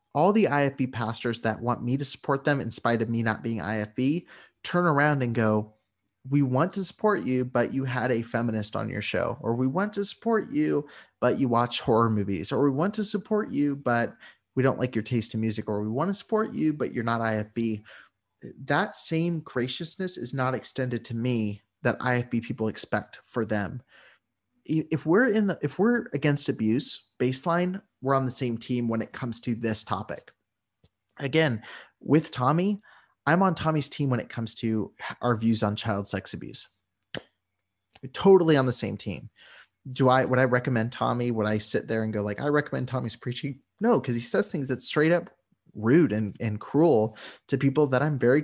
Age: 30-49